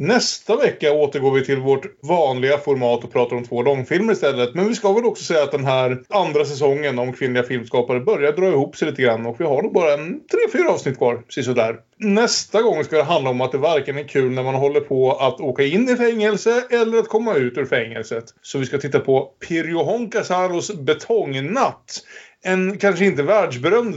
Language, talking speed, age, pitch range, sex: Swedish, 205 wpm, 30-49, 125-180 Hz, male